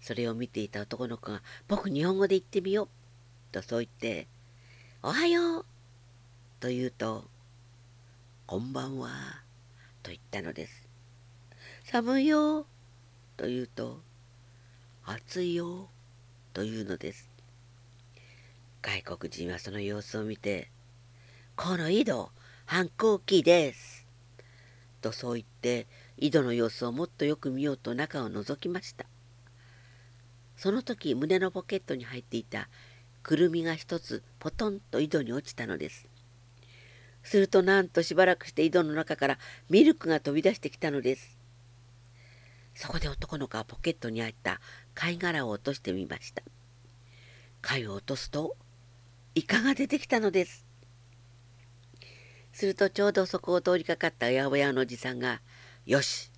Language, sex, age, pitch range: Japanese, female, 50-69, 120-150 Hz